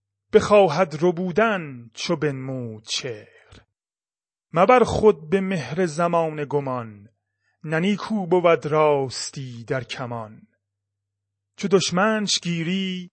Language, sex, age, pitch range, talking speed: Persian, male, 30-49, 130-185 Hz, 95 wpm